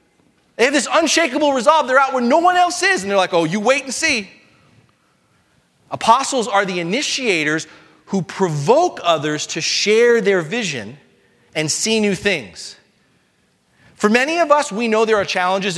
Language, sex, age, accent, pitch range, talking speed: English, male, 30-49, American, 170-235 Hz, 165 wpm